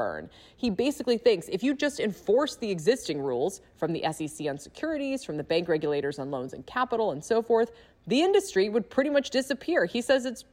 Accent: American